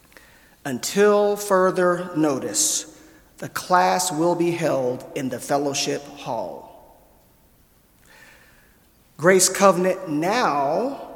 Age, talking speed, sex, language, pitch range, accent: 40-59, 80 wpm, male, English, 155-190 Hz, American